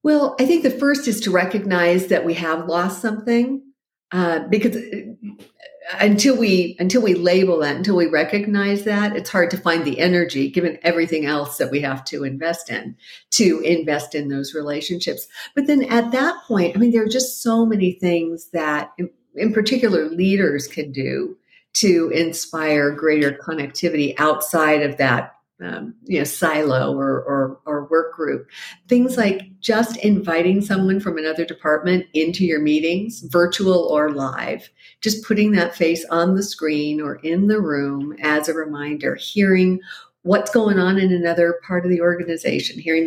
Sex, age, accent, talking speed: female, 50-69, American, 165 wpm